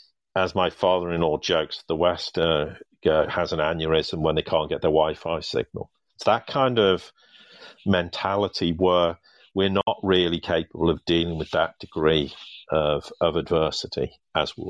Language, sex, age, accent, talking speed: English, male, 50-69, British, 150 wpm